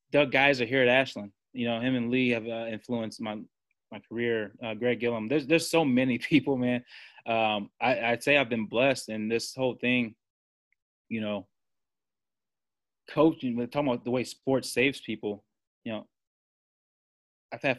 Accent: American